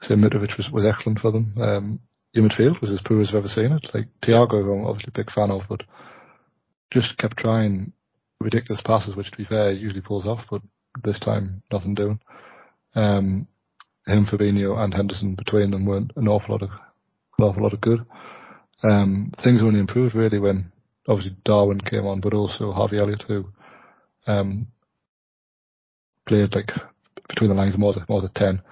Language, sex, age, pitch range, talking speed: English, male, 30-49, 100-110 Hz, 180 wpm